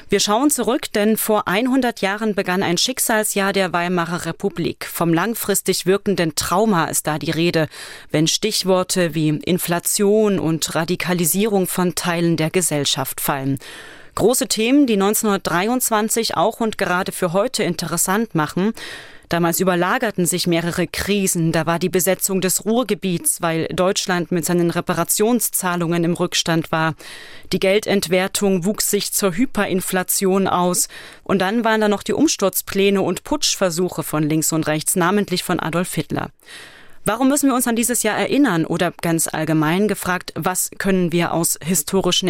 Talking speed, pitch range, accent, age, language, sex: 145 wpm, 170-210 Hz, German, 30-49, German, female